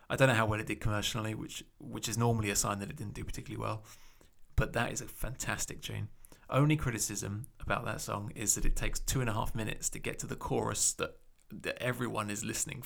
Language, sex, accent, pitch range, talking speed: English, male, British, 105-130 Hz, 235 wpm